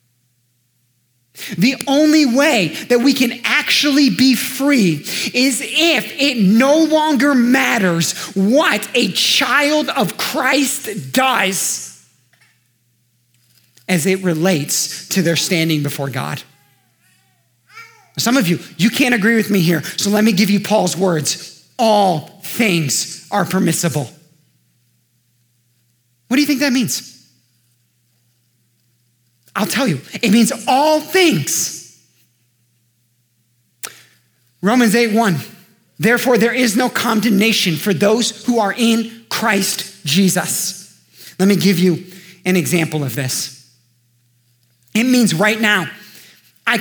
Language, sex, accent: English, male, American